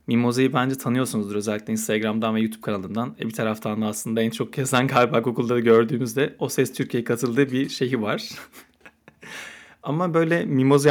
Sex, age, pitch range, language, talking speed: male, 30-49, 115-145 Hz, Turkish, 160 wpm